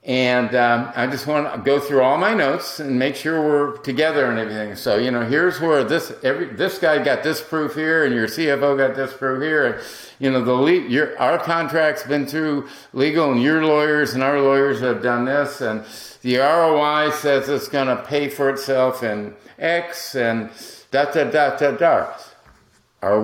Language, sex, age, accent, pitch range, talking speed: English, male, 50-69, American, 125-150 Hz, 195 wpm